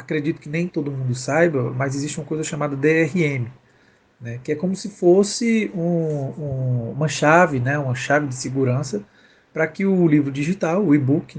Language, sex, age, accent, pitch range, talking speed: Portuguese, male, 40-59, Brazilian, 125-170 Hz, 185 wpm